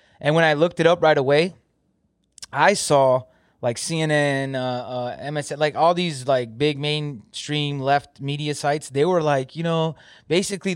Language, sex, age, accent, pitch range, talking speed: English, male, 20-39, American, 130-165 Hz, 165 wpm